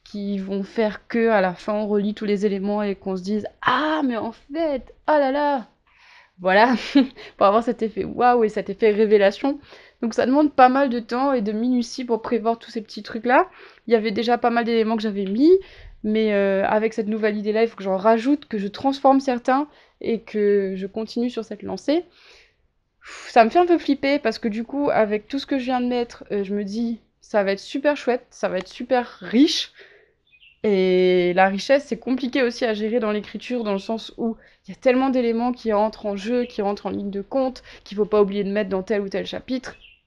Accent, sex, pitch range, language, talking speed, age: French, female, 210-270 Hz, French, 230 wpm, 20-39